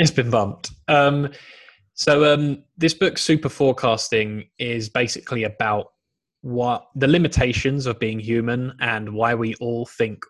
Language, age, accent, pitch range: English, 10-29, British, 110-135 Hz